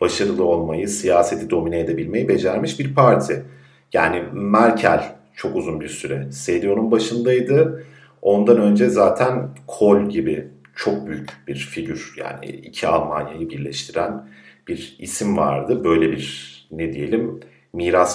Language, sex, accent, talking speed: Turkish, male, native, 120 wpm